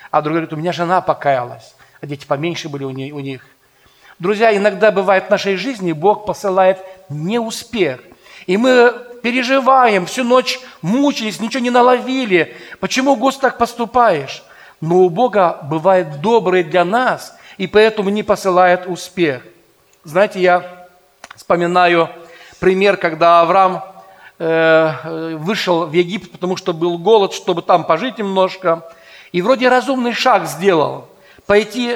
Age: 40-59